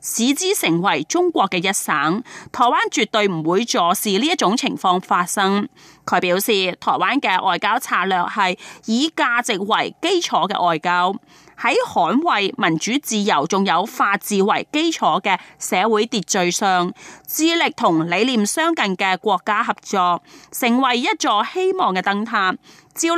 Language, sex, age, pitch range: Chinese, female, 30-49, 185-285 Hz